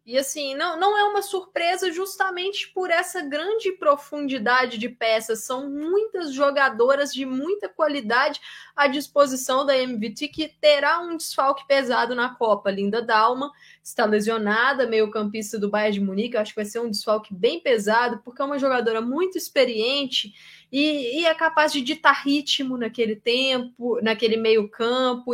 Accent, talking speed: Brazilian, 160 wpm